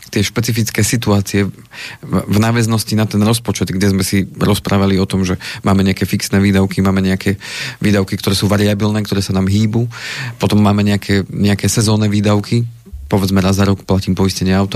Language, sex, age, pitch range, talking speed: Slovak, male, 40-59, 95-110 Hz, 170 wpm